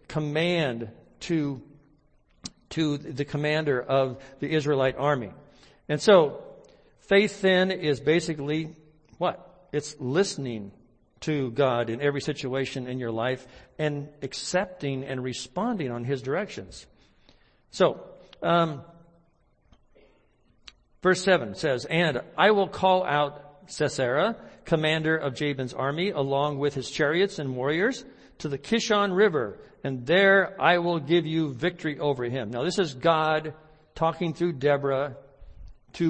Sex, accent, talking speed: male, American, 125 wpm